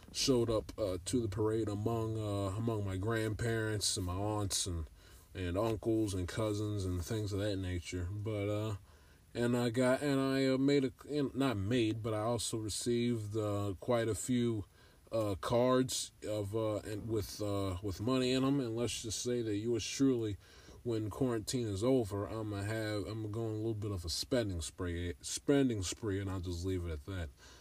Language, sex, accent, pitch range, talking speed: English, male, American, 95-120 Hz, 190 wpm